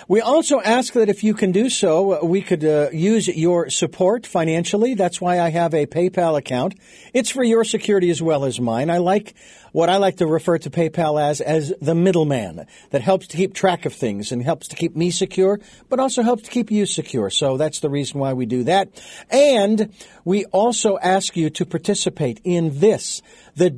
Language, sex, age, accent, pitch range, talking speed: English, male, 50-69, American, 160-210 Hz, 205 wpm